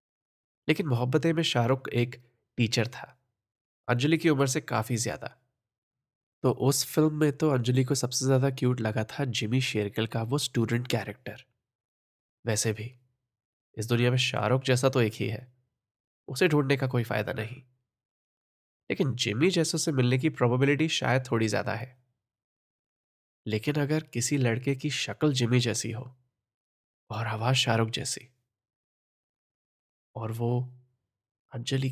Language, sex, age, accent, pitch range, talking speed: Hindi, male, 20-39, native, 115-130 Hz, 140 wpm